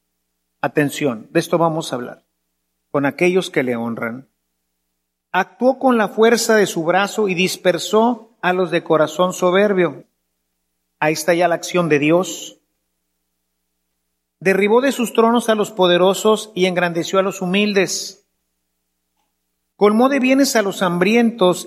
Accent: Mexican